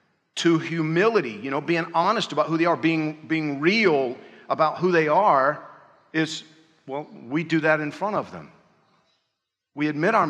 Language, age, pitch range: English, 50-69, 150-185 Hz